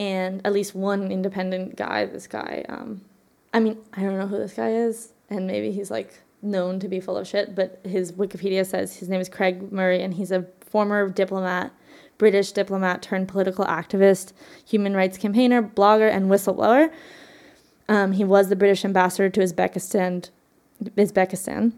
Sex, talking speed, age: female, 170 wpm, 20-39